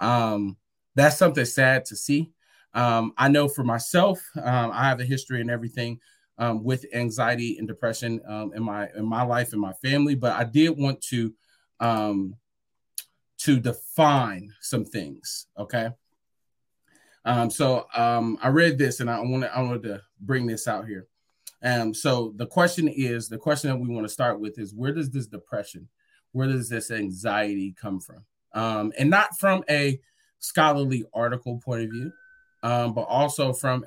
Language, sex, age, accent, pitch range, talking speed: English, male, 30-49, American, 115-145 Hz, 175 wpm